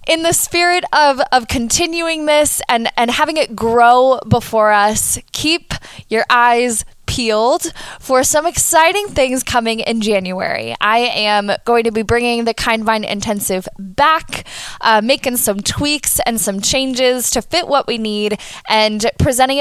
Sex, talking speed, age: female, 150 wpm, 10-29